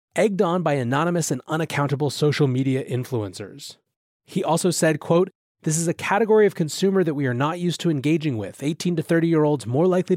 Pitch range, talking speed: 130-170 Hz, 190 wpm